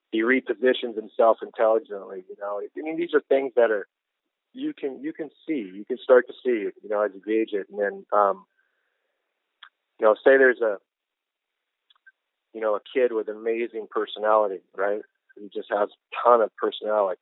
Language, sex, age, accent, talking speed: English, male, 40-59, American, 180 wpm